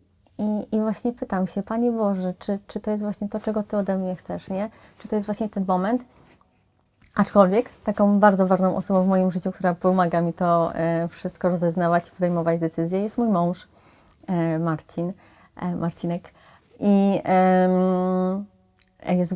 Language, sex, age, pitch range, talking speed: Polish, female, 20-39, 180-195 Hz, 150 wpm